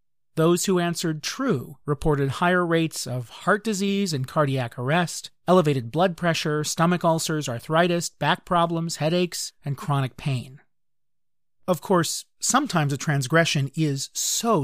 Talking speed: 130 wpm